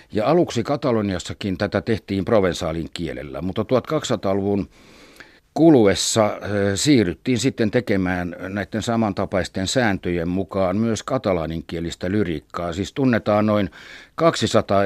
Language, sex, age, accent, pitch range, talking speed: Finnish, male, 60-79, native, 90-115 Hz, 95 wpm